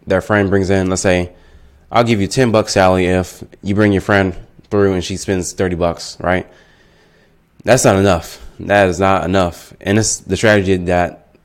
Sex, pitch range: male, 90-105 Hz